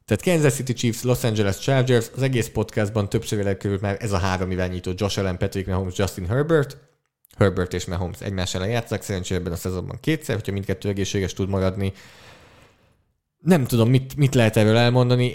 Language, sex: English, male